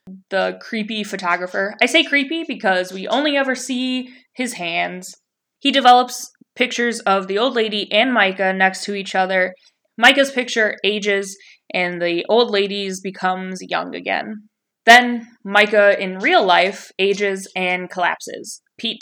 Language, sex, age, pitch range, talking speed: English, female, 20-39, 190-250 Hz, 140 wpm